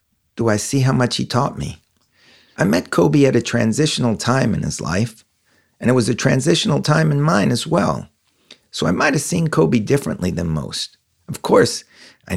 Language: English